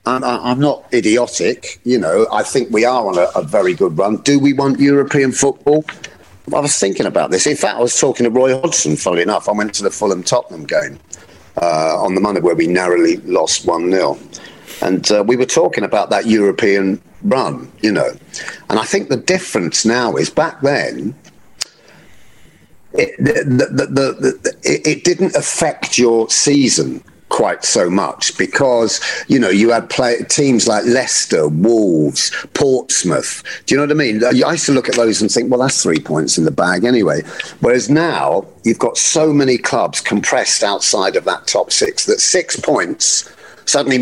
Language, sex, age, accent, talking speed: English, male, 40-59, British, 180 wpm